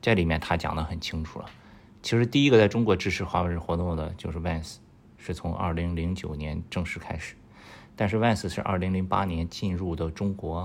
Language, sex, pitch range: Chinese, male, 80-100 Hz